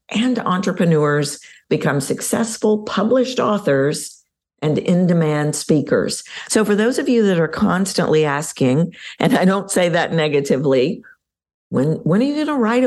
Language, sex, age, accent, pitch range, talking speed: English, female, 50-69, American, 145-225 Hz, 145 wpm